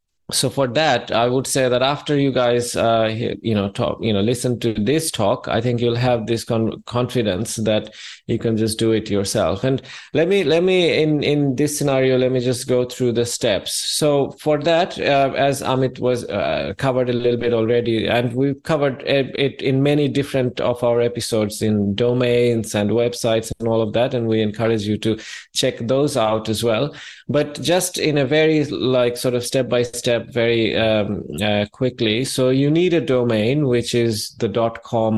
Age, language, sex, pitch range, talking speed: 20-39, English, male, 110-135 Hz, 195 wpm